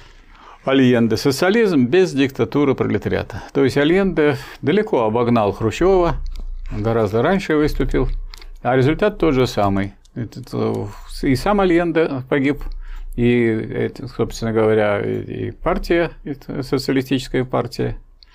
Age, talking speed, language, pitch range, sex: 50-69, 105 wpm, Russian, 110-150 Hz, male